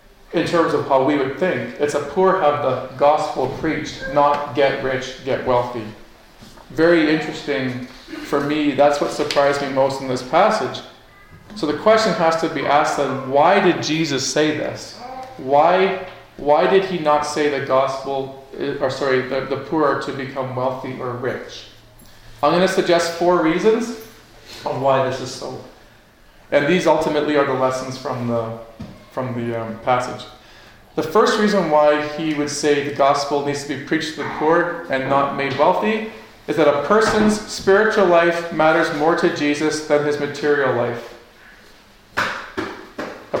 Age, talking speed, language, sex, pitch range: 40-59, 165 wpm, English, male, 135-165 Hz